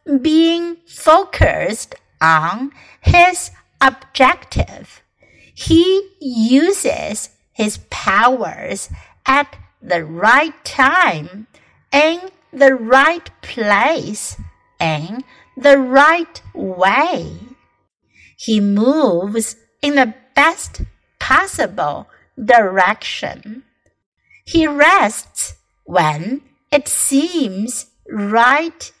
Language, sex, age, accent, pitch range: Chinese, female, 60-79, American, 220-300 Hz